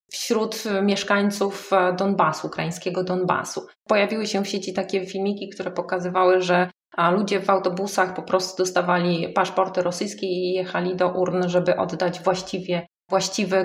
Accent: native